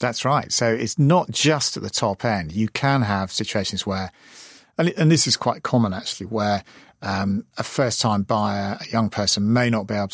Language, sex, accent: English, male, British